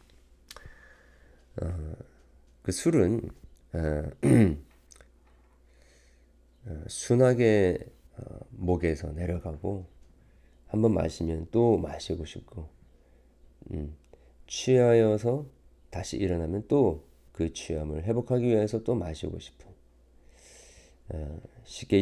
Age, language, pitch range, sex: 40-59, Korean, 65-95 Hz, male